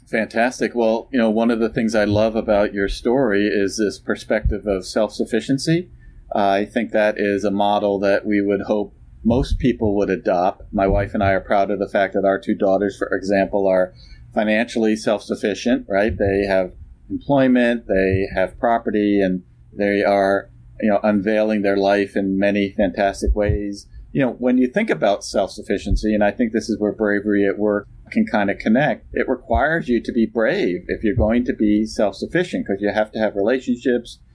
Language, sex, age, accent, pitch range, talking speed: English, male, 40-59, American, 100-115 Hz, 195 wpm